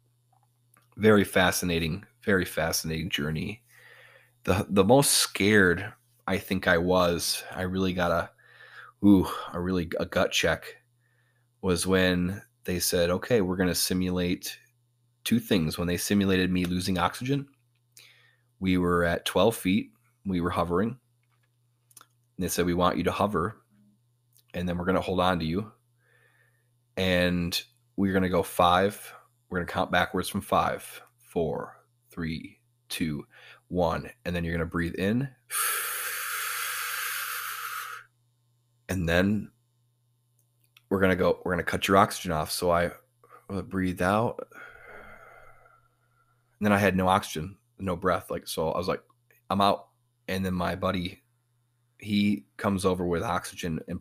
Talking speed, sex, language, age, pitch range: 145 wpm, male, English, 20-39, 90-120 Hz